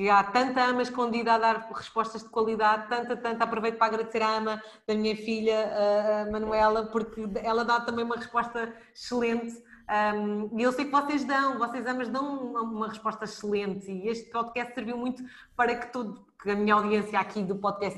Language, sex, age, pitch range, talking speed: Portuguese, female, 20-39, 210-240 Hz, 185 wpm